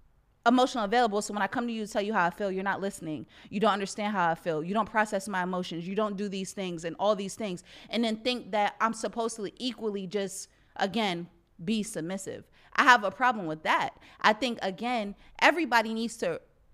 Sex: female